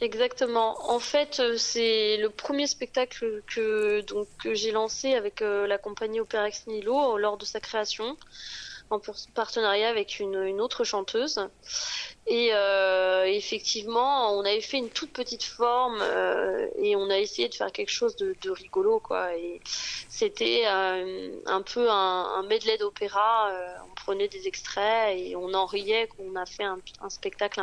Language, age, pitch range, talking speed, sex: French, 20-39, 195-255 Hz, 160 wpm, female